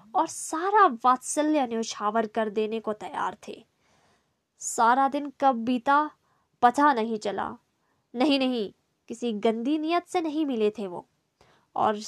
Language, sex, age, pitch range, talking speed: Hindi, female, 20-39, 230-305 Hz, 135 wpm